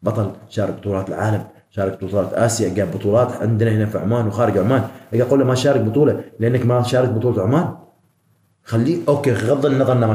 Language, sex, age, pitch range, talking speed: Arabic, male, 30-49, 115-145 Hz, 175 wpm